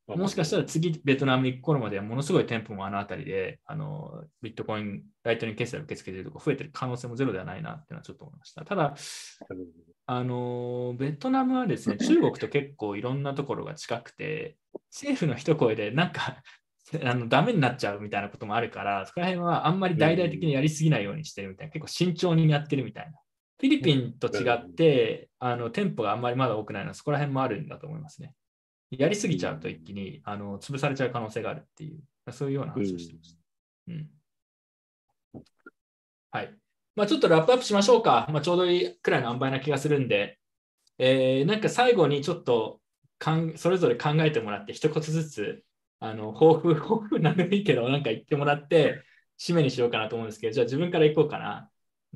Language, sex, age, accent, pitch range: Japanese, male, 20-39, native, 115-165 Hz